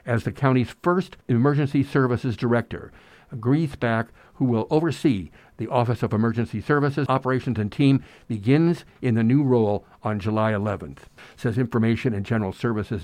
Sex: male